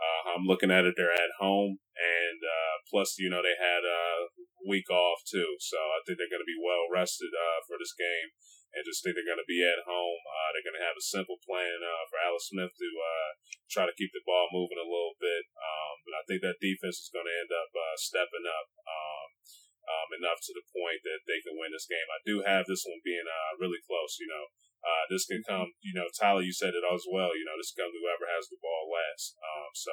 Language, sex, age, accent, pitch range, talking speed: English, male, 30-49, American, 85-120 Hz, 235 wpm